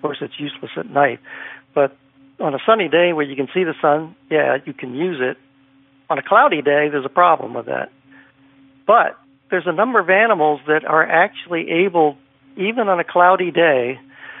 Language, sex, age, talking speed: English, male, 60-79, 190 wpm